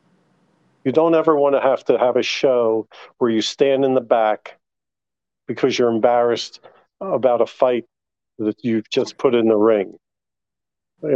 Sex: male